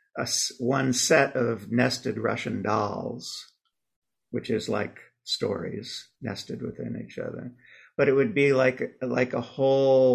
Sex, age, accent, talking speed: male, 50-69, American, 135 wpm